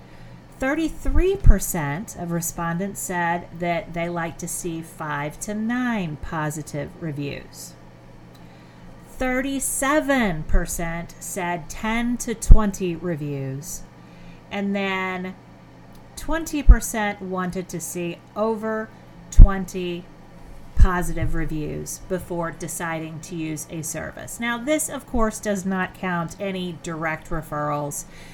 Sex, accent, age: female, American, 40-59